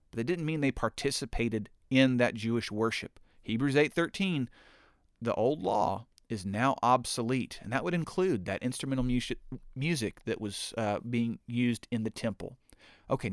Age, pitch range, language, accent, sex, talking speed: 40-59, 105-140 Hz, English, American, male, 155 wpm